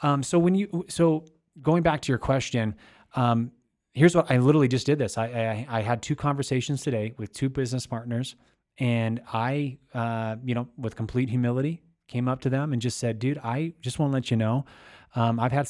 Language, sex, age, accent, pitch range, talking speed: English, male, 30-49, American, 110-135 Hz, 210 wpm